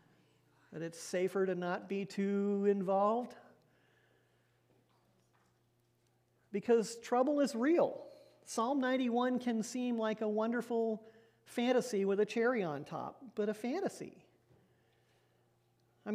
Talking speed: 110 wpm